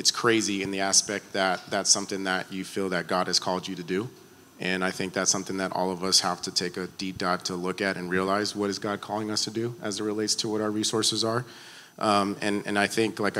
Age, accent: 30-49, American